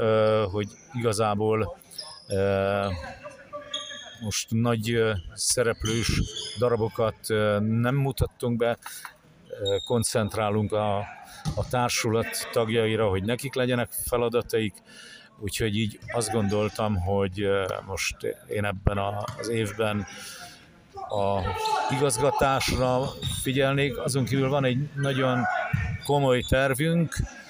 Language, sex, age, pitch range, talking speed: Hungarian, male, 50-69, 105-125 Hz, 80 wpm